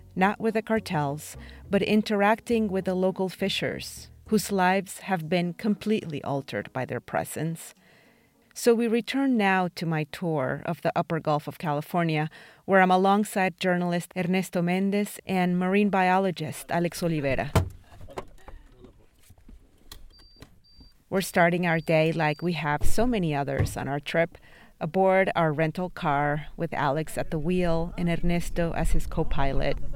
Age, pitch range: 30-49, 155-190 Hz